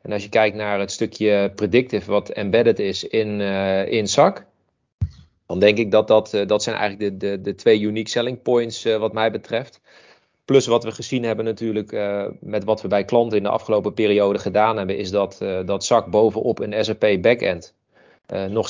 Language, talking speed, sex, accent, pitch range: Dutch, 205 wpm, male, Dutch, 100-115 Hz